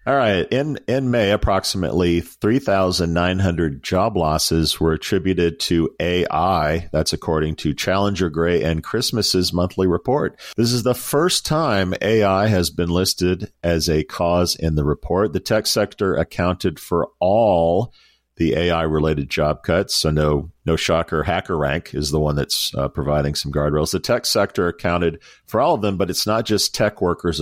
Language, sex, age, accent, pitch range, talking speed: English, male, 50-69, American, 80-95 Hz, 175 wpm